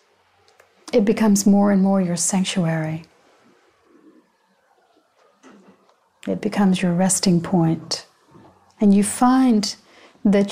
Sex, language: female, English